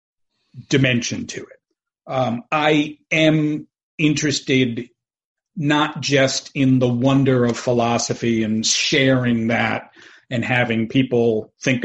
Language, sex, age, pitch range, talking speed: English, male, 40-59, 120-140 Hz, 105 wpm